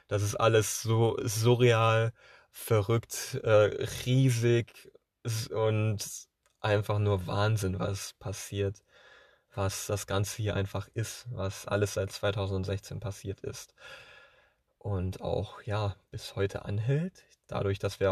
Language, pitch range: German, 105-140 Hz